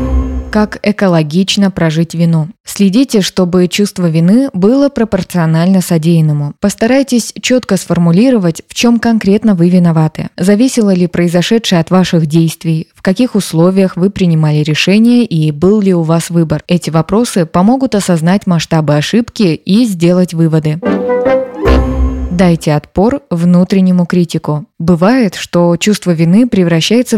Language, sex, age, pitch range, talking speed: Russian, female, 20-39, 165-205 Hz, 120 wpm